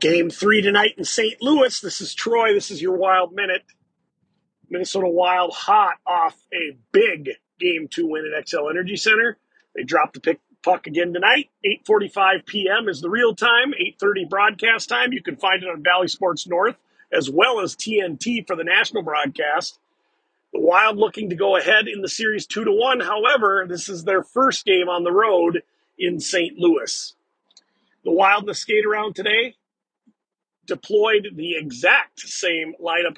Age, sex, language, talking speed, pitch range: 40-59, male, English, 170 wpm, 170-235 Hz